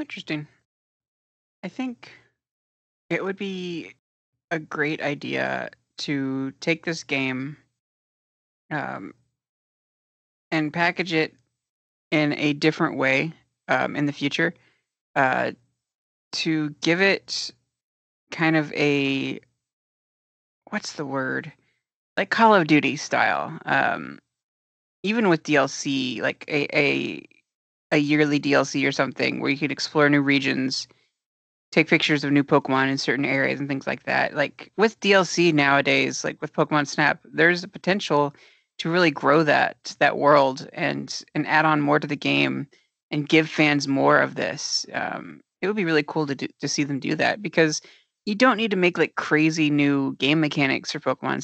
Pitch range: 140-165 Hz